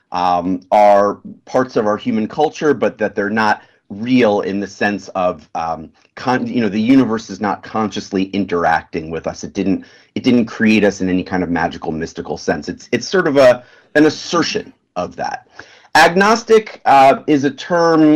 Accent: American